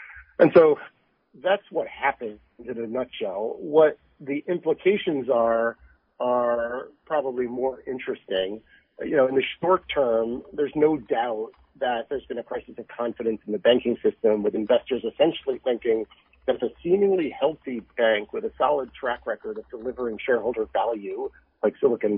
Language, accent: English, American